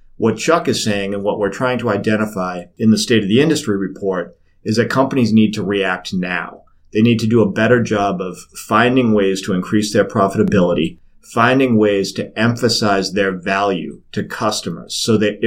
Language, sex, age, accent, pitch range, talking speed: English, male, 40-59, American, 100-115 Hz, 185 wpm